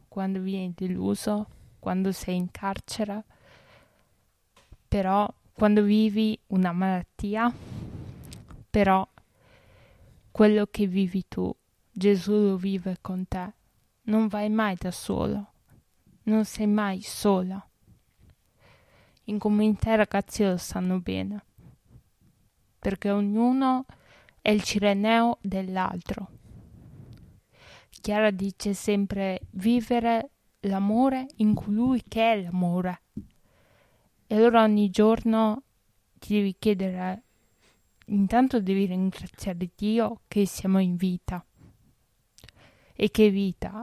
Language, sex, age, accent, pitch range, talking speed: Italian, female, 20-39, native, 185-215 Hz, 100 wpm